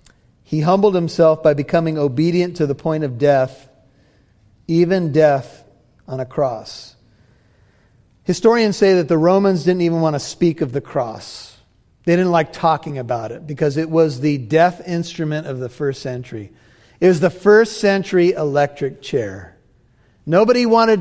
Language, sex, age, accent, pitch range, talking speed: English, male, 40-59, American, 140-190 Hz, 155 wpm